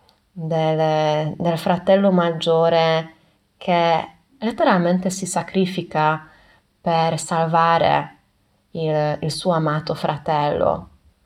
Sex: female